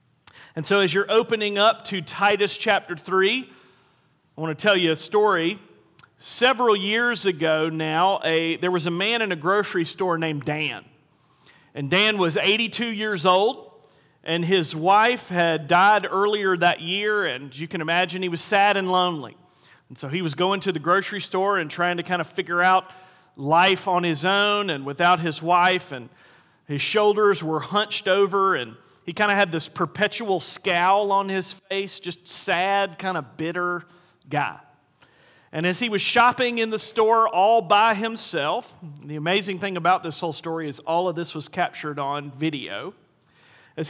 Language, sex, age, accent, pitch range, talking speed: English, male, 40-59, American, 165-205 Hz, 175 wpm